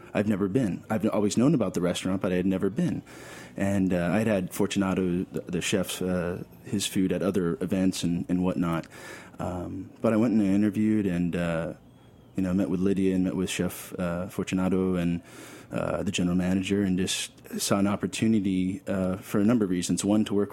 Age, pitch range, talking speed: 20-39, 90-100 Hz, 200 wpm